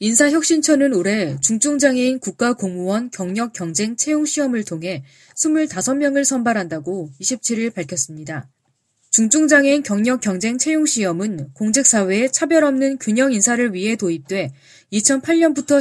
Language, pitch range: Korean, 175-275 Hz